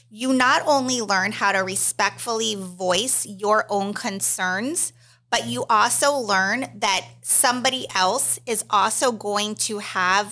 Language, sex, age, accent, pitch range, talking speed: English, female, 30-49, American, 195-255 Hz, 135 wpm